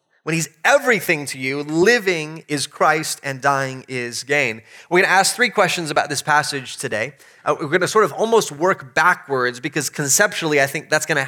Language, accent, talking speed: English, American, 200 wpm